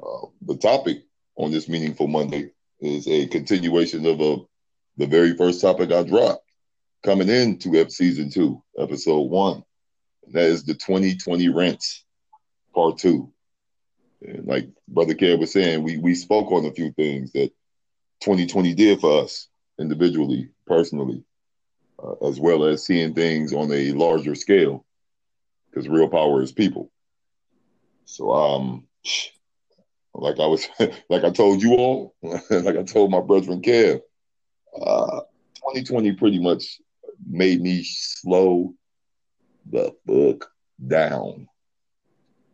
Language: English